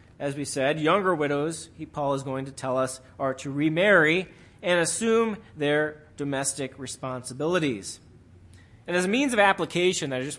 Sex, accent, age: male, American, 30-49